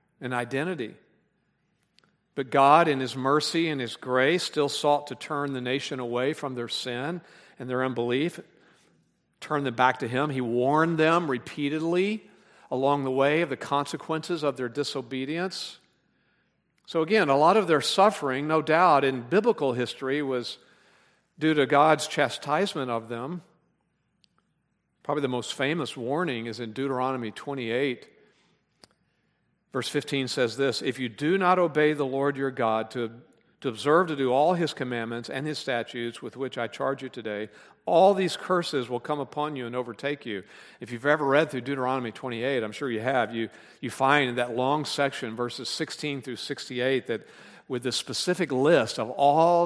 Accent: American